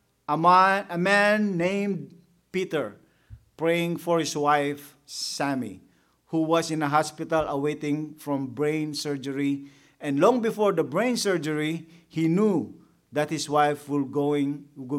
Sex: male